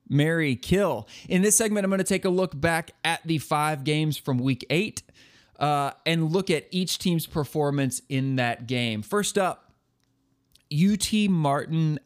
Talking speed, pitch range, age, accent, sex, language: 165 wpm, 125-165 Hz, 30-49, American, male, English